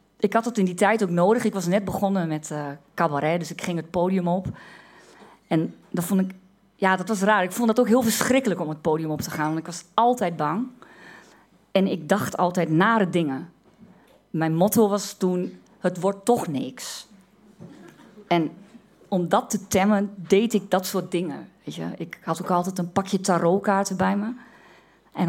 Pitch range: 175-220 Hz